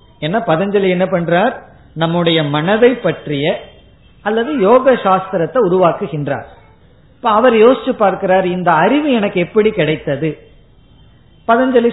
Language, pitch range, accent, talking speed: Tamil, 150-210 Hz, native, 100 wpm